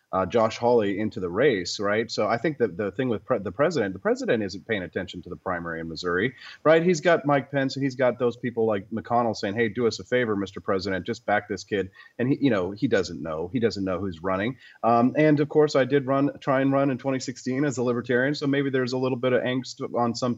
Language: English